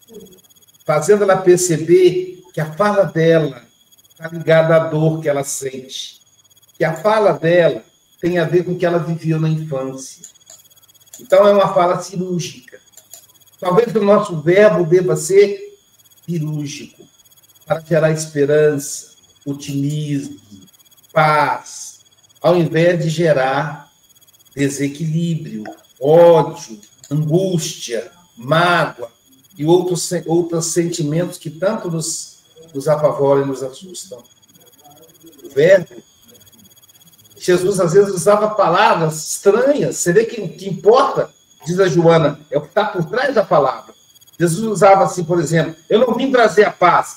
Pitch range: 145-180 Hz